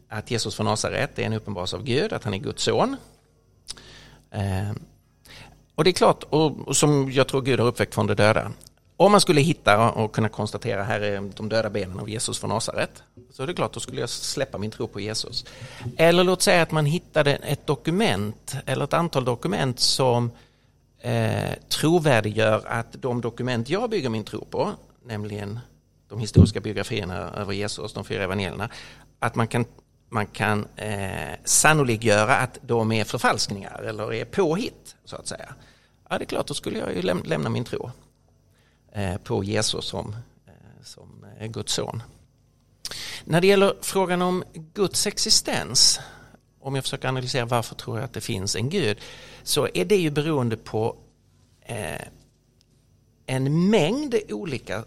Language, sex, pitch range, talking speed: English, male, 105-140 Hz, 165 wpm